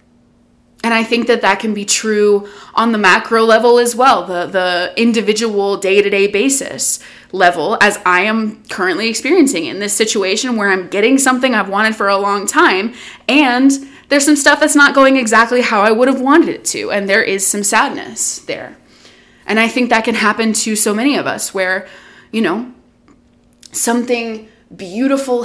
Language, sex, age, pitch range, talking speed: English, female, 20-39, 205-245 Hz, 180 wpm